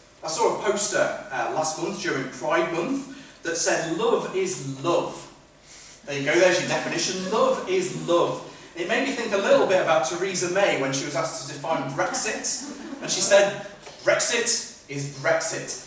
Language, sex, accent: English, male, British